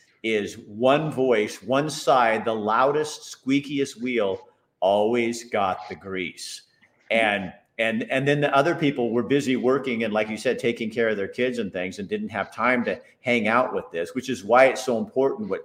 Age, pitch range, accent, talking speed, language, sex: 50-69, 105-140 Hz, American, 190 wpm, English, male